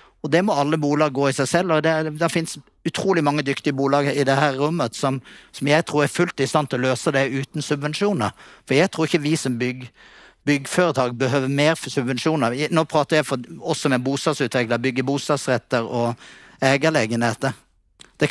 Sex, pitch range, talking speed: male, 130-160 Hz, 185 wpm